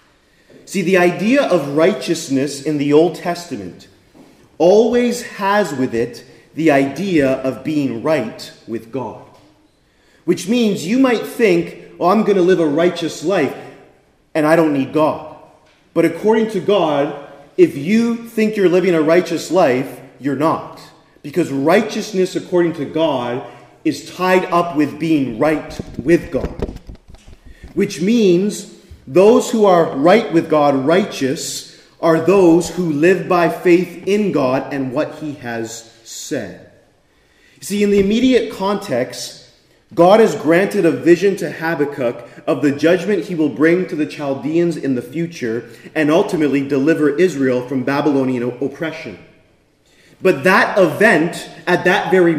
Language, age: English, 30-49